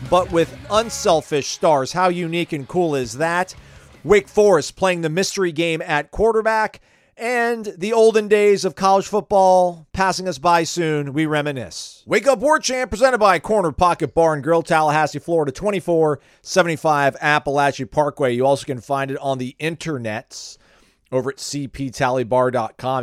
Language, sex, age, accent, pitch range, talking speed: English, male, 40-59, American, 125-175 Hz, 150 wpm